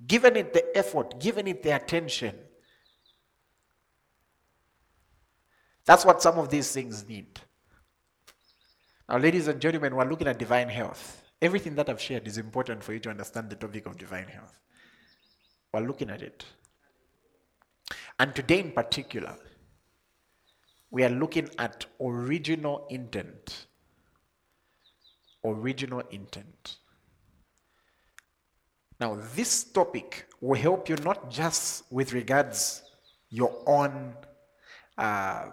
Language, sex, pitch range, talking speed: English, male, 100-145 Hz, 115 wpm